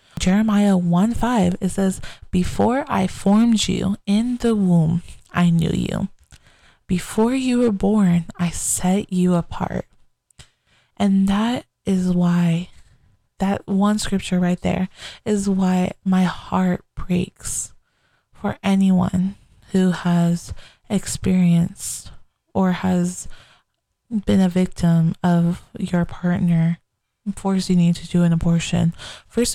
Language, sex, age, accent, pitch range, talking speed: English, female, 20-39, American, 180-205 Hz, 120 wpm